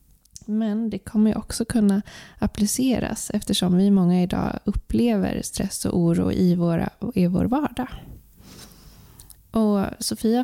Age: 20-39